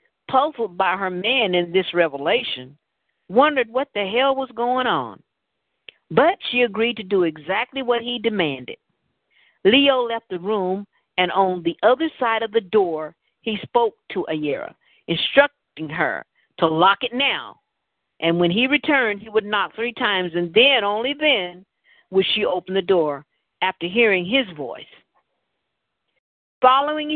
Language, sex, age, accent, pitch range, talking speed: English, female, 50-69, American, 175-255 Hz, 150 wpm